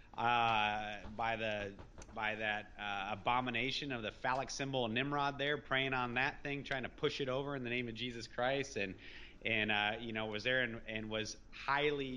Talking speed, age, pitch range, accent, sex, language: 195 wpm, 30-49, 105-130 Hz, American, male, English